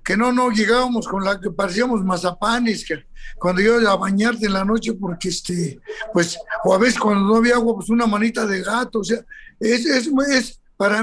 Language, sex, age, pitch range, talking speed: Spanish, male, 60-79, 210-250 Hz, 205 wpm